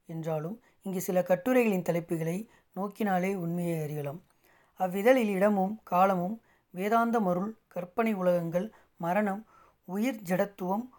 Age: 30-49